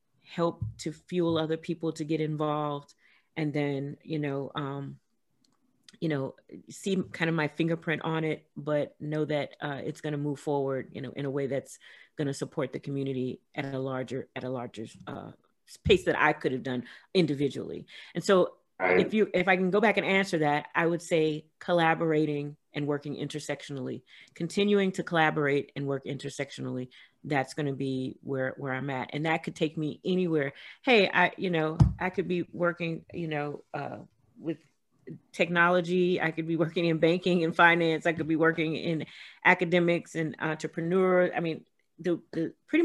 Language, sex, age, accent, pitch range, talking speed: English, female, 40-59, American, 145-170 Hz, 180 wpm